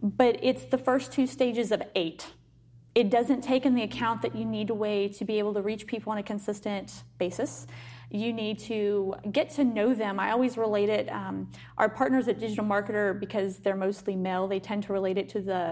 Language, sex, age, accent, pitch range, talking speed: English, female, 30-49, American, 195-245 Hz, 220 wpm